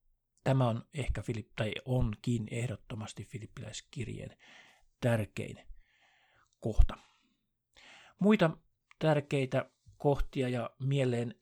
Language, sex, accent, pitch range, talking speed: Finnish, male, native, 110-130 Hz, 80 wpm